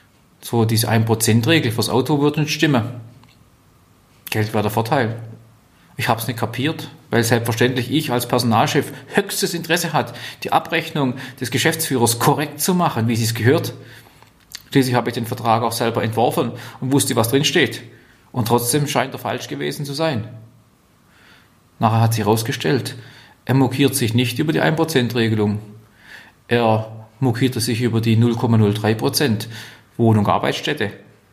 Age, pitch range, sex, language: 40-59, 115-135 Hz, male, German